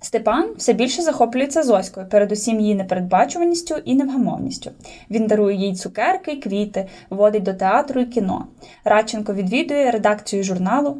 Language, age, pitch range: Ukrainian, 10-29, 210-275 Hz